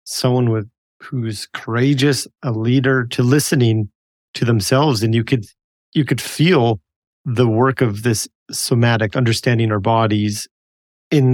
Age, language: 40-59, English